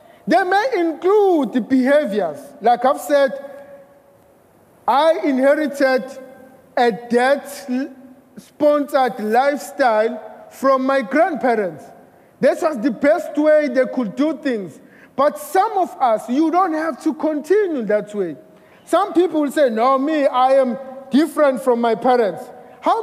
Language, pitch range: English, 265-325 Hz